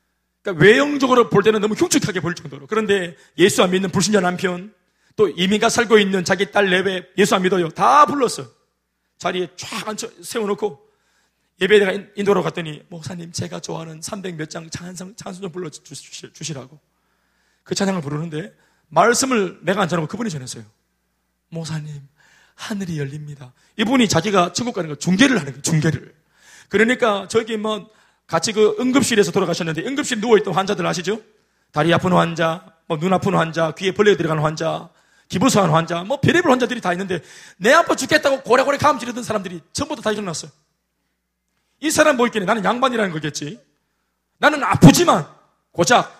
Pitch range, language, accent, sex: 165-235 Hz, Korean, native, male